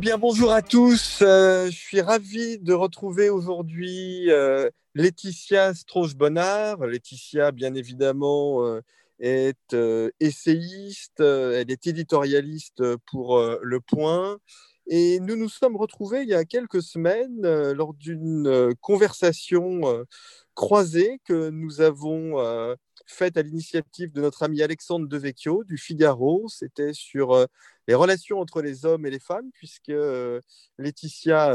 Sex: male